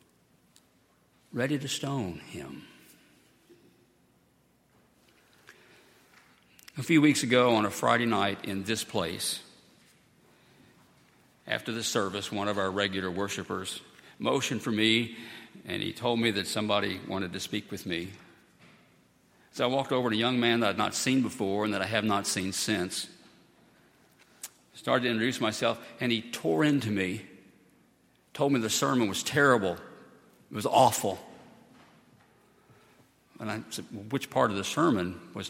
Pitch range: 100-130 Hz